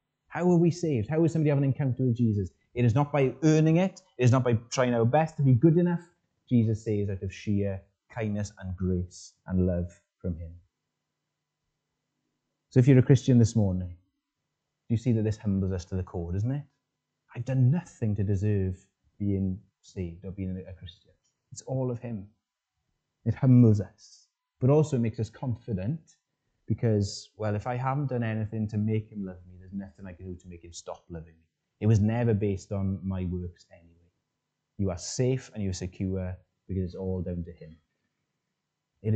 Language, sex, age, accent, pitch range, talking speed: English, male, 30-49, British, 95-130 Hz, 195 wpm